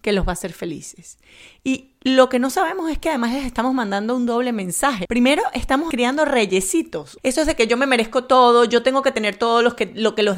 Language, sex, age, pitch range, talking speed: Spanish, female, 30-49, 225-275 Hz, 230 wpm